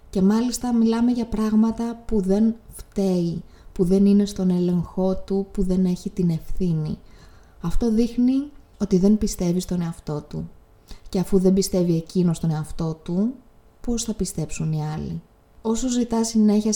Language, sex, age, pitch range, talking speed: Greek, female, 20-39, 170-205 Hz, 155 wpm